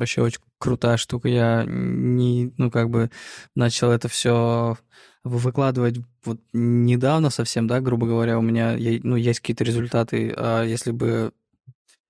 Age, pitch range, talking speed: 20-39, 115-130 Hz, 145 wpm